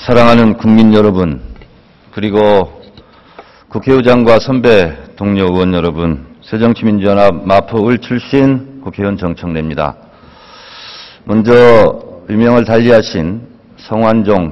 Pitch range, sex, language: 105-150 Hz, male, Korean